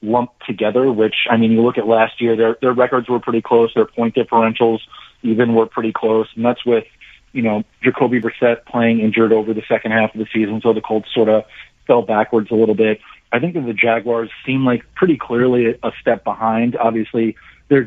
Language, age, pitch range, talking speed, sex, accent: English, 40-59, 110-125 Hz, 210 wpm, male, American